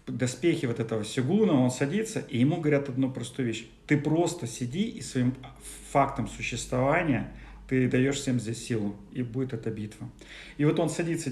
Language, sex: Russian, male